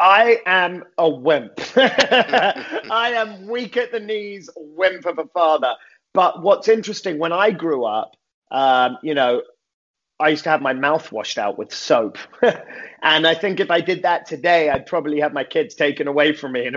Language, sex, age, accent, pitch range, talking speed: English, male, 30-49, British, 140-185 Hz, 185 wpm